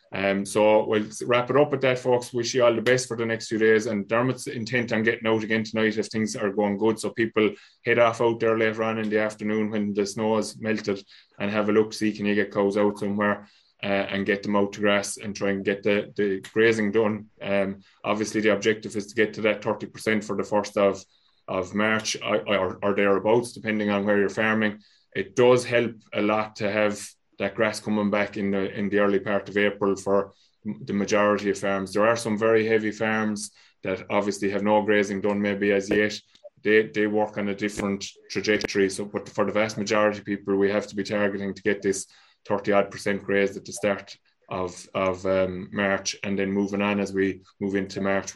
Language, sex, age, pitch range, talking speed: English, male, 20-39, 100-110 Hz, 225 wpm